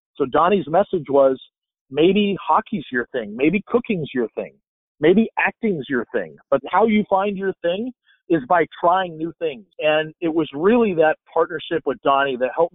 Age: 50-69